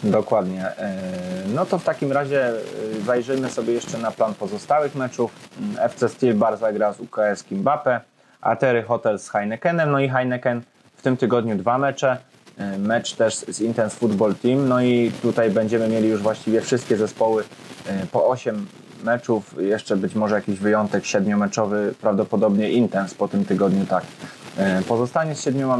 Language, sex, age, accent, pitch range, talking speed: Polish, male, 20-39, native, 105-130 Hz, 150 wpm